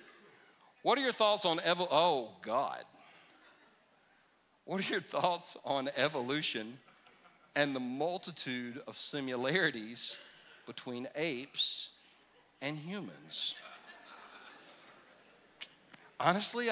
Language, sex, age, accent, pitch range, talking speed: English, male, 50-69, American, 125-180 Hz, 85 wpm